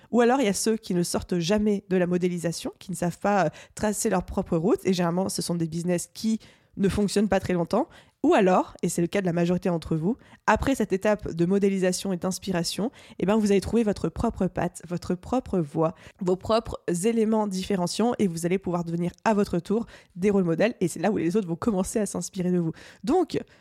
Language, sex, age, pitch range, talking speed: French, female, 20-39, 180-220 Hz, 230 wpm